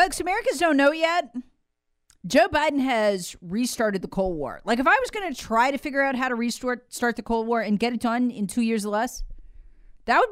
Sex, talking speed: female, 225 wpm